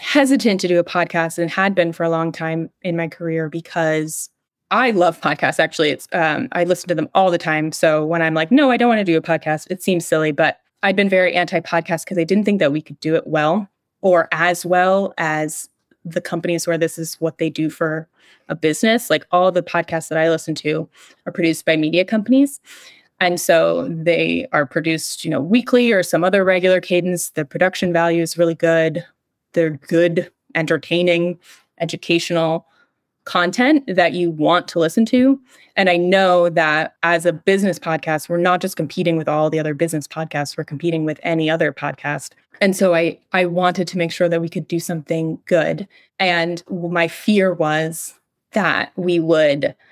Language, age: English, 20-39